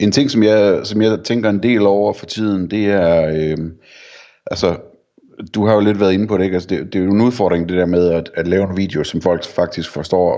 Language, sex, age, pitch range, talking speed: Danish, male, 30-49, 85-100 Hz, 255 wpm